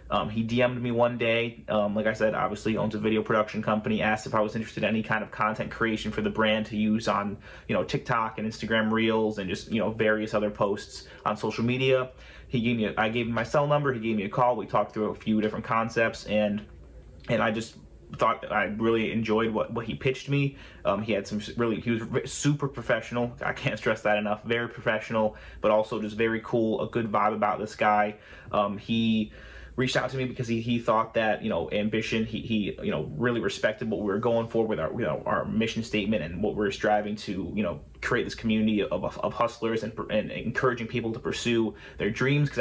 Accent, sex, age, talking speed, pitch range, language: American, male, 30-49, 235 wpm, 105-115 Hz, English